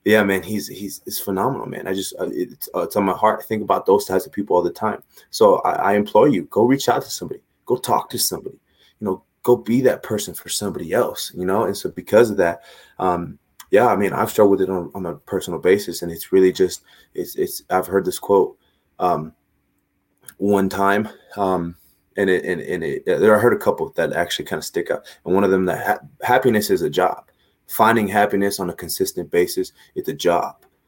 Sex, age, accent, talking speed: male, 20-39, American, 225 wpm